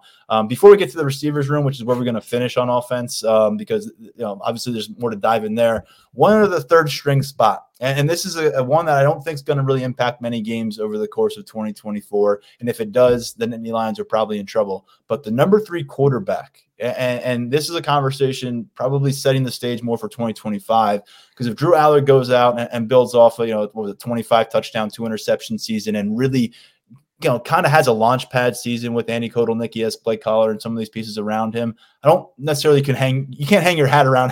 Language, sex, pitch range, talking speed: English, male, 115-140 Hz, 245 wpm